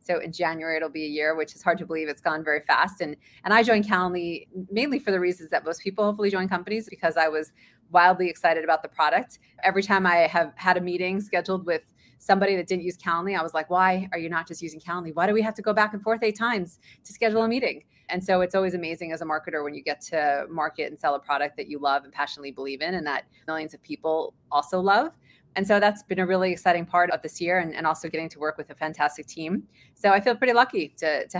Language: English